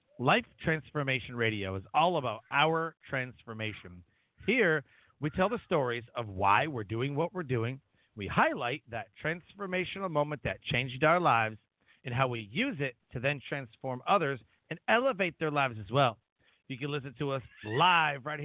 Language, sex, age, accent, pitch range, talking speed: English, male, 40-59, American, 120-165 Hz, 165 wpm